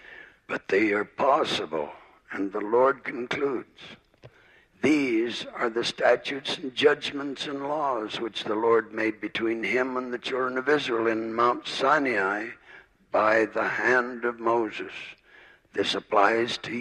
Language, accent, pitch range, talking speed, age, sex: English, American, 120-130 Hz, 135 wpm, 60-79, male